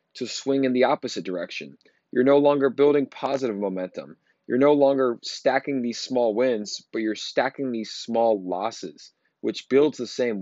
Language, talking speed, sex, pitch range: English, 165 wpm, male, 105-135 Hz